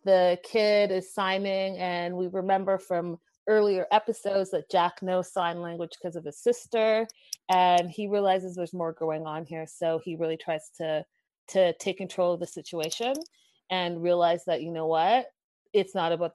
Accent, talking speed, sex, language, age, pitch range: American, 175 wpm, female, English, 30-49, 160-185 Hz